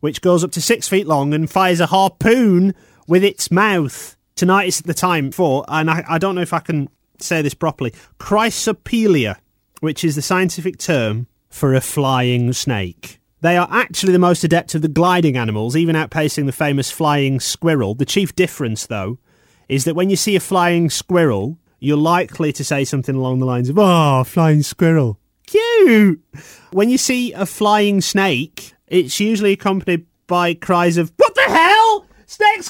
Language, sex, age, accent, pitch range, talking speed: English, male, 30-49, British, 135-195 Hz, 180 wpm